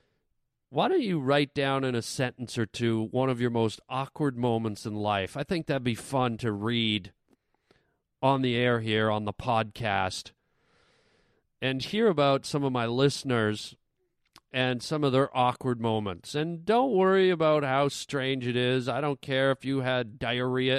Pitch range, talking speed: 115-150 Hz, 175 wpm